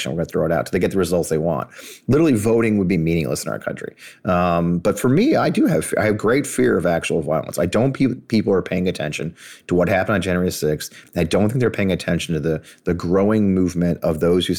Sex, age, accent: male, 30-49, American